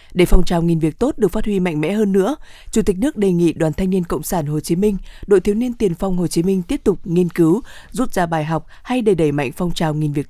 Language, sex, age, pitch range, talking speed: Vietnamese, female, 20-39, 170-215 Hz, 290 wpm